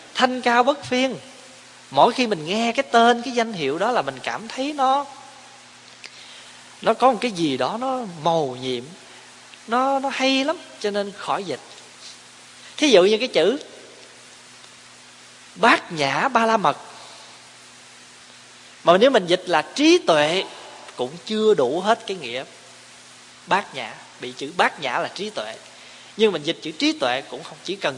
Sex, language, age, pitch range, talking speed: male, Vietnamese, 20-39, 155-235 Hz, 165 wpm